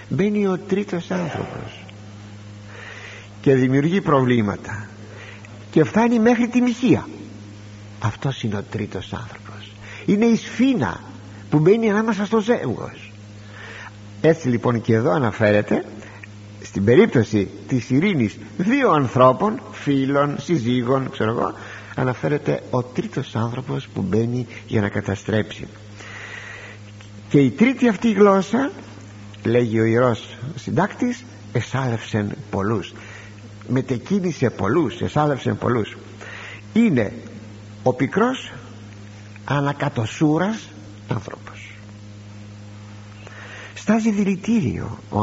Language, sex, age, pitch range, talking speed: Greek, male, 50-69, 105-140 Hz, 95 wpm